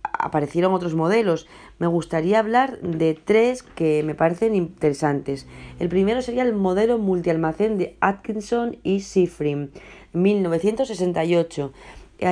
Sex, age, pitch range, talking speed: female, 30-49, 160-205 Hz, 110 wpm